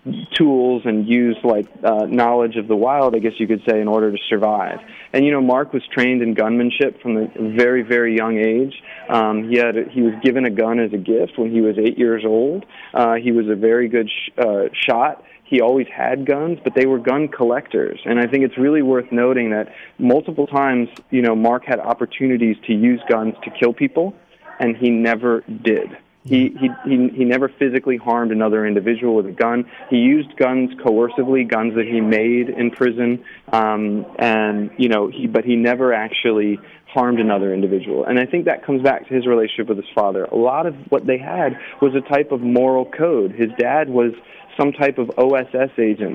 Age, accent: 30-49, American